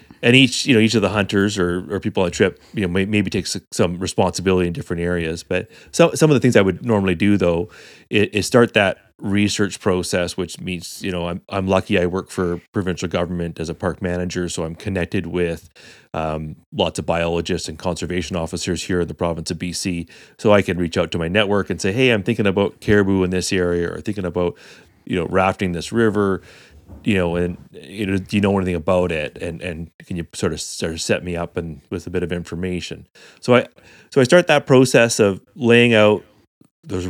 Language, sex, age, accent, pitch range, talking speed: English, male, 30-49, American, 85-105 Hz, 225 wpm